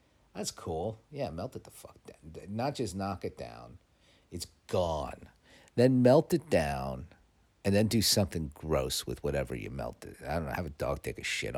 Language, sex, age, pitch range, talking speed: English, male, 50-69, 75-105 Hz, 195 wpm